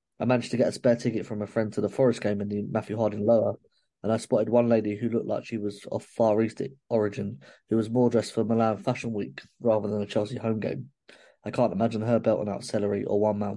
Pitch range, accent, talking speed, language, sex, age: 105-115 Hz, British, 255 wpm, English, male, 20-39